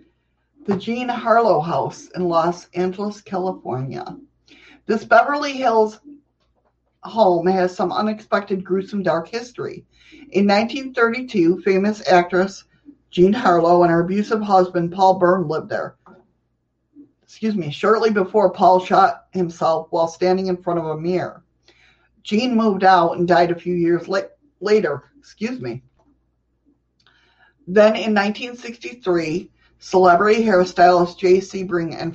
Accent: American